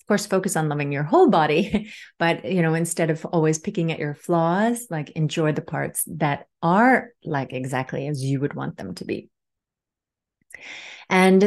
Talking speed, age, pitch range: 180 wpm, 30-49, 150-180 Hz